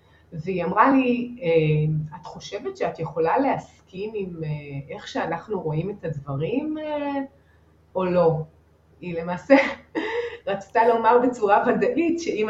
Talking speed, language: 110 wpm, Hebrew